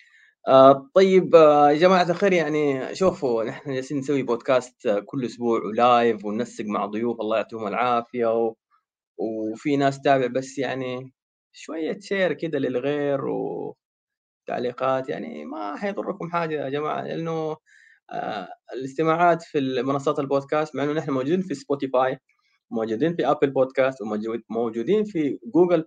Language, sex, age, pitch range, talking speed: Arabic, male, 20-39, 130-185 Hz, 135 wpm